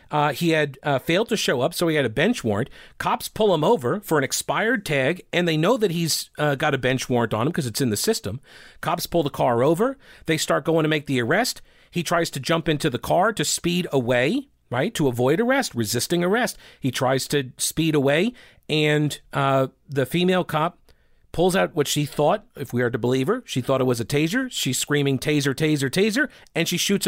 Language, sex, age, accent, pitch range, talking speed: English, male, 40-59, American, 135-175 Hz, 225 wpm